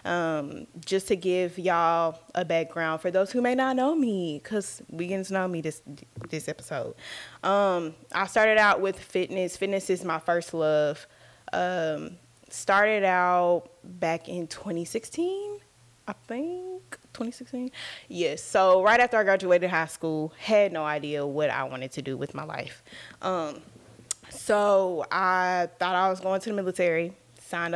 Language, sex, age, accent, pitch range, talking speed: English, female, 10-29, American, 160-205 Hz, 160 wpm